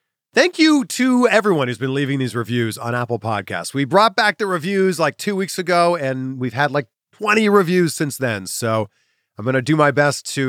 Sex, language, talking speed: male, English, 210 wpm